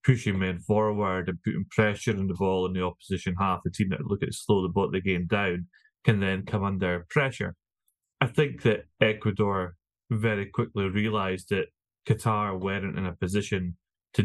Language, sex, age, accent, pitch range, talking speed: English, male, 20-39, British, 95-105 Hz, 180 wpm